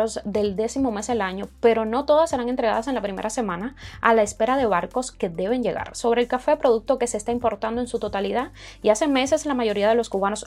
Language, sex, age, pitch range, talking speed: Spanish, female, 20-39, 215-275 Hz, 235 wpm